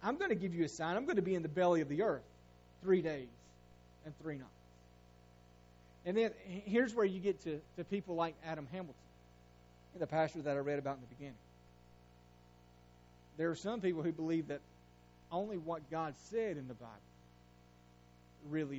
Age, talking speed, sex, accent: 30-49, 190 wpm, male, American